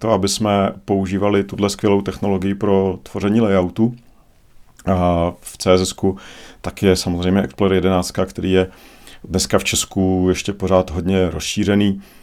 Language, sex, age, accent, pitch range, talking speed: Czech, male, 40-59, native, 90-110 Hz, 130 wpm